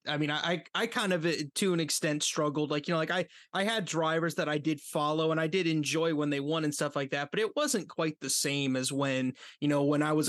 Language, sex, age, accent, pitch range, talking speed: English, male, 20-39, American, 140-175 Hz, 270 wpm